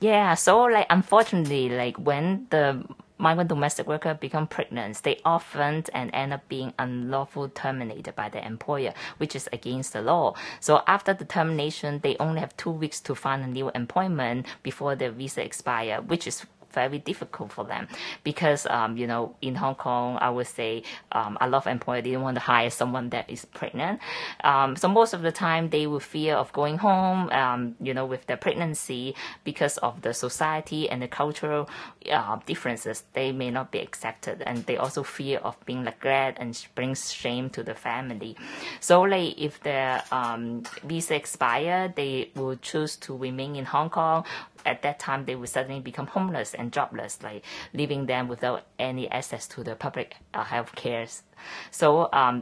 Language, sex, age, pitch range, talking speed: English, female, 20-39, 125-155 Hz, 185 wpm